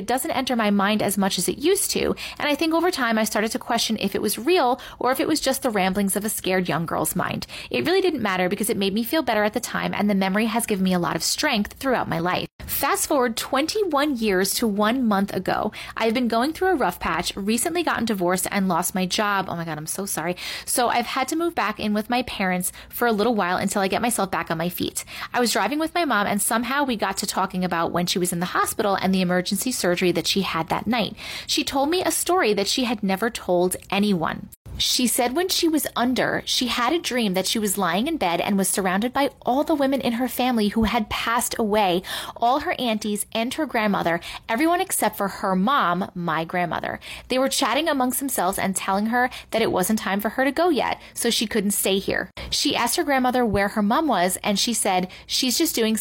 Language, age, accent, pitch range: English, 30-49, American, 195-255 Hz